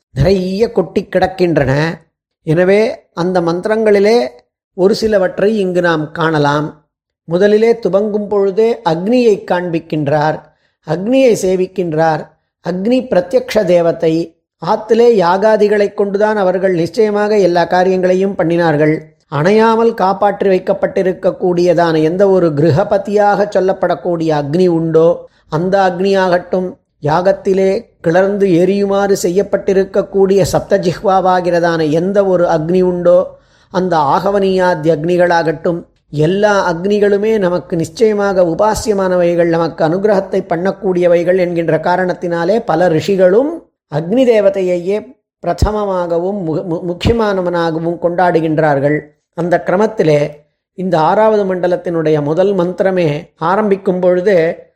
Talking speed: 85 wpm